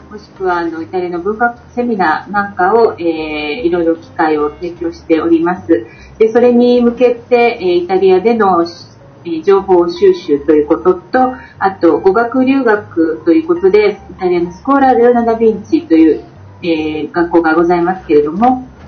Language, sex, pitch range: Japanese, female, 165-240 Hz